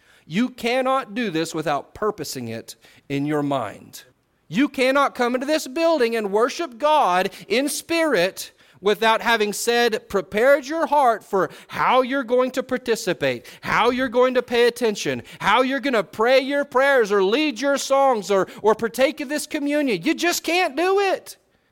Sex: male